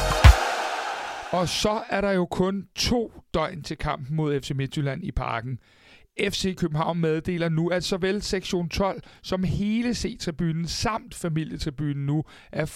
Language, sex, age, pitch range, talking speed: Danish, male, 60-79, 135-190 Hz, 140 wpm